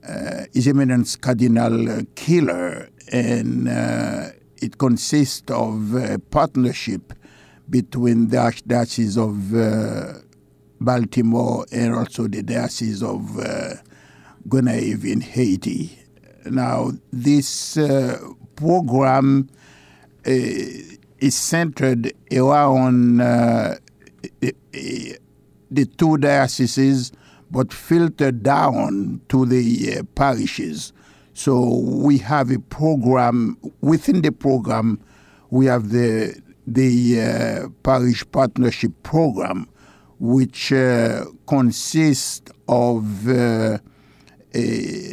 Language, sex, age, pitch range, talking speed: English, male, 60-79, 115-135 Hz, 95 wpm